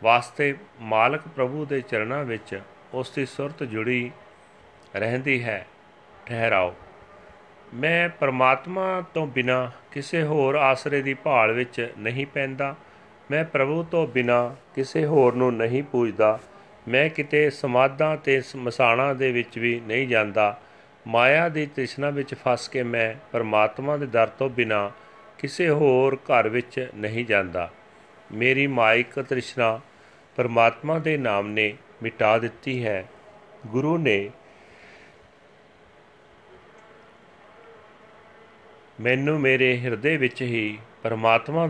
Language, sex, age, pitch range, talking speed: Punjabi, male, 40-59, 115-150 Hz, 115 wpm